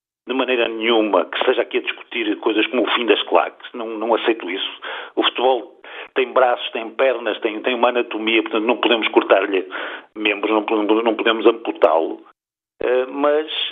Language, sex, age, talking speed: Portuguese, male, 50-69, 170 wpm